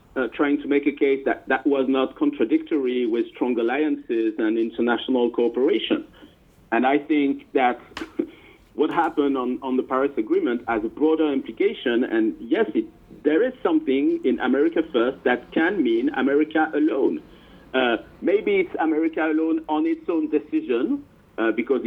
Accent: French